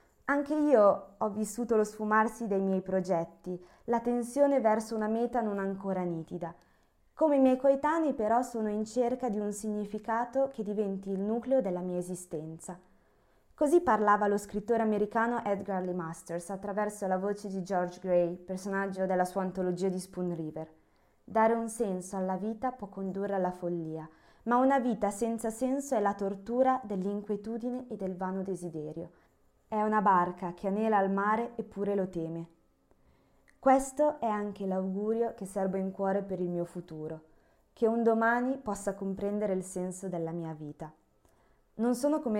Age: 20-39